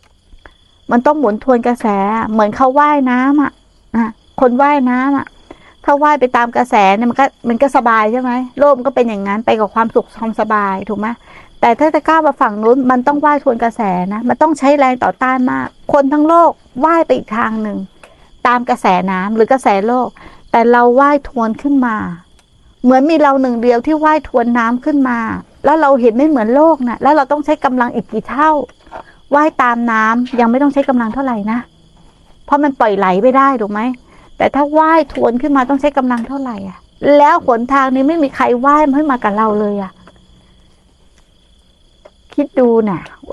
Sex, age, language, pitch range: female, 60-79, Thai, 225-280 Hz